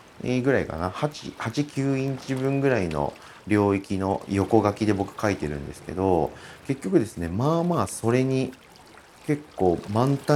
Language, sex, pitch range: Japanese, male, 85-120 Hz